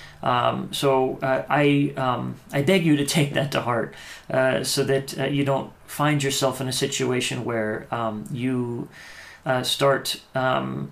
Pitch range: 110-140 Hz